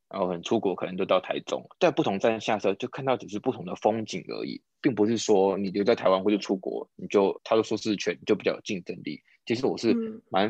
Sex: male